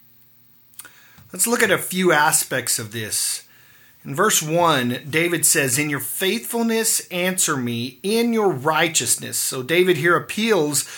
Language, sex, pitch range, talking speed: English, male, 135-180 Hz, 135 wpm